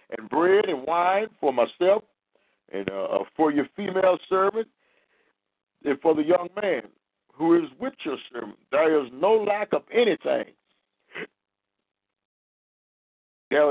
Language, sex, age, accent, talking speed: English, male, 50-69, American, 125 wpm